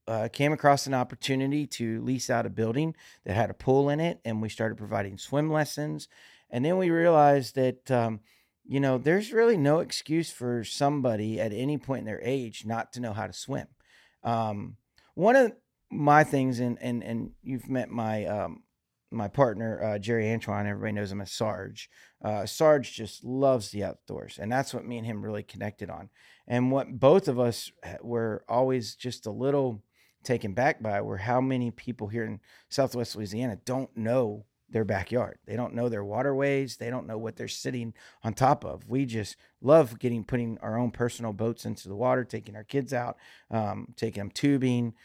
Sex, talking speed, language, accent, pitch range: male, 190 wpm, English, American, 110-135 Hz